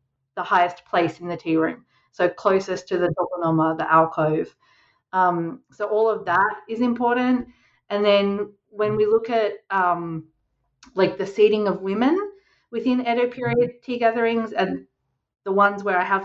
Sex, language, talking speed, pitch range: female, English, 160 wpm, 175-210 Hz